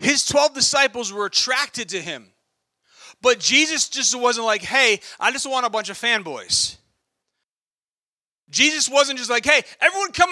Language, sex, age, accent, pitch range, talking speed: English, male, 40-59, American, 230-290 Hz, 155 wpm